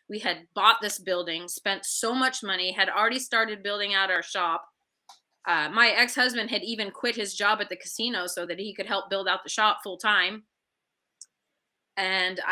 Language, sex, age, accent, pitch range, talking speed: English, female, 20-39, American, 185-225 Hz, 185 wpm